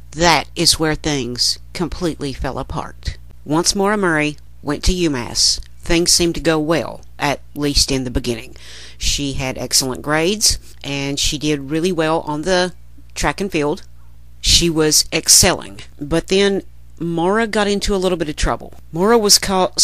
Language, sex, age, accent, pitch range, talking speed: English, female, 50-69, American, 135-195 Hz, 160 wpm